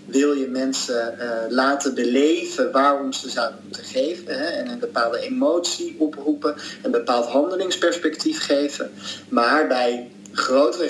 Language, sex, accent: Dutch, male, Dutch